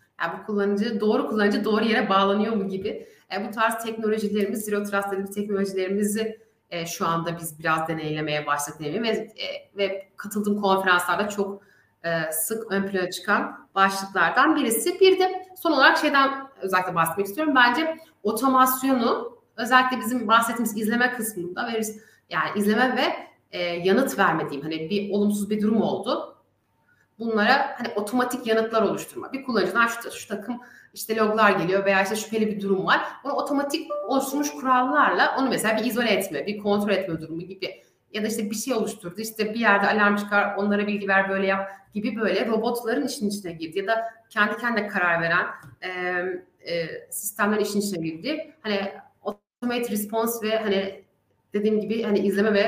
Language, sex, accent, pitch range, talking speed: Turkish, female, native, 195-235 Hz, 160 wpm